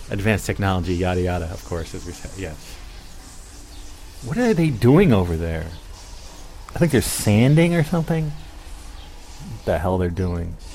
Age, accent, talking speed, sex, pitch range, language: 30-49, American, 155 wpm, male, 85-115 Hz, English